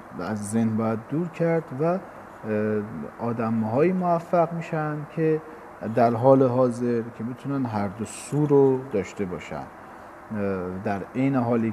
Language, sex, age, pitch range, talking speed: Persian, male, 40-59, 110-135 Hz, 125 wpm